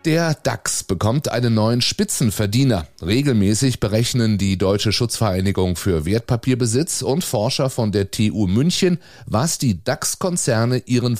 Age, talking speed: 30-49, 125 wpm